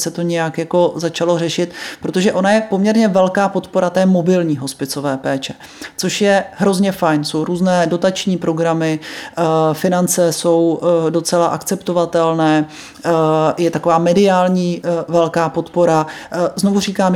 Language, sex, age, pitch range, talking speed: Czech, male, 30-49, 160-180 Hz, 120 wpm